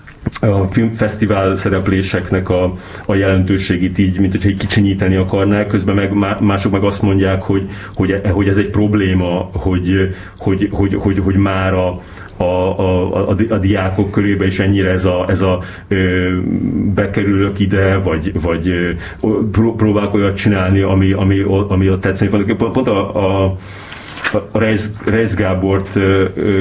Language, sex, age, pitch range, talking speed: Hungarian, male, 30-49, 90-105 Hz, 140 wpm